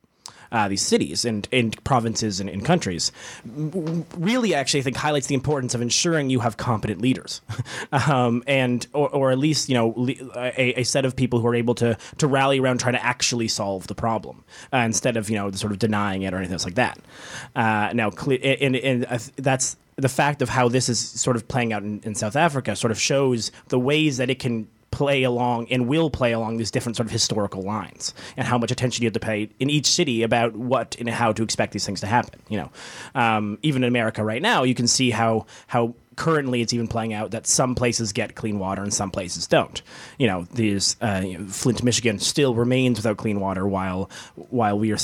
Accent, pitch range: American, 105-130 Hz